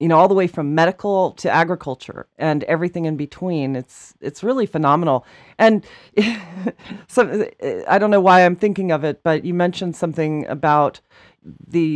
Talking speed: 165 wpm